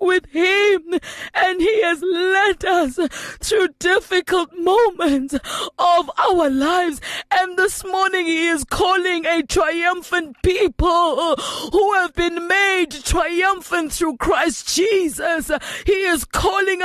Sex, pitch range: female, 295-345 Hz